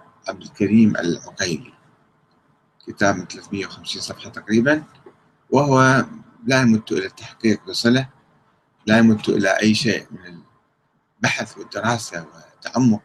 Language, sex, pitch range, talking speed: Arabic, male, 105-135 Hz, 95 wpm